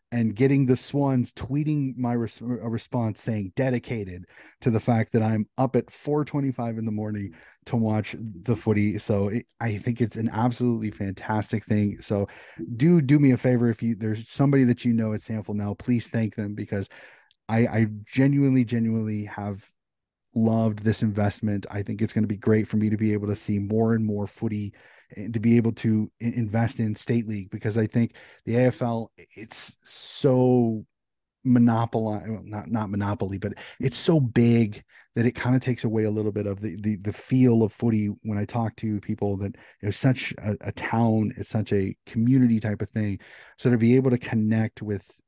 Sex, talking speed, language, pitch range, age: male, 195 wpm, English, 105-120 Hz, 30-49